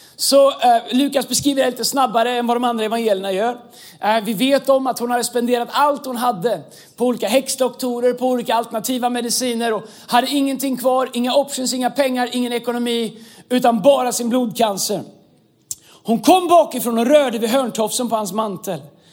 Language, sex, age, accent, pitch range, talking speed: Swedish, male, 30-49, native, 225-280 Hz, 175 wpm